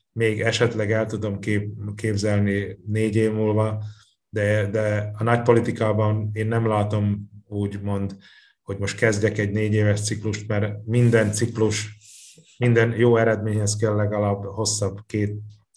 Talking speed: 125 wpm